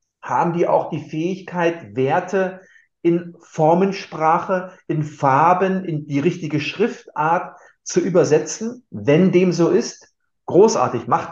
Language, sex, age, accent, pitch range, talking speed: German, male, 50-69, German, 130-180 Hz, 115 wpm